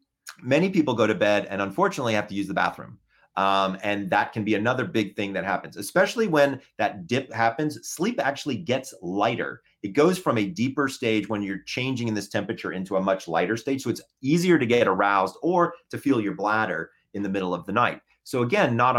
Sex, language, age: male, English, 30-49